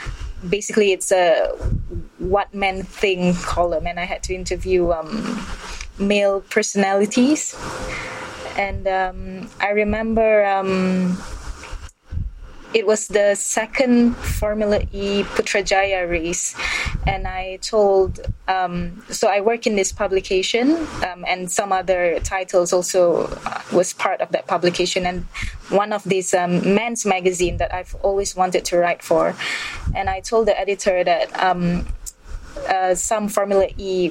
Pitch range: 180-205 Hz